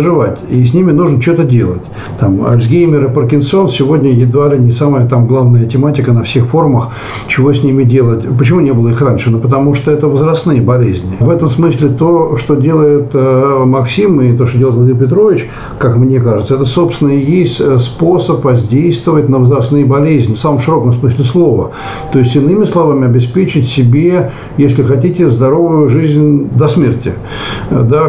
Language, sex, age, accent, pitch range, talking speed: Russian, male, 60-79, native, 125-150 Hz, 165 wpm